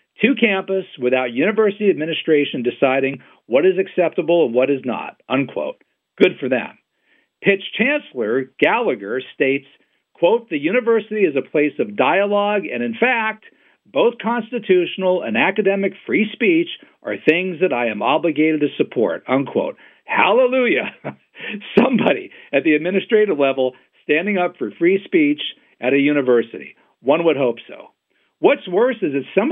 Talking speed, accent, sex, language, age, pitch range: 140 wpm, American, male, English, 50-69, 150-250 Hz